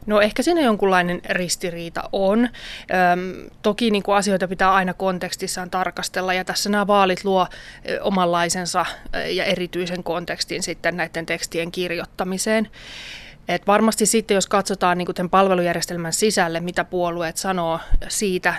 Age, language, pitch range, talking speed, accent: 30-49, Finnish, 170-195 Hz, 125 wpm, native